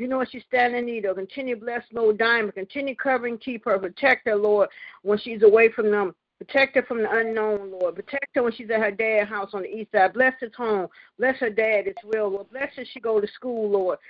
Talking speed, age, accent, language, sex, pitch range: 245 wpm, 50-69, American, English, female, 210-250 Hz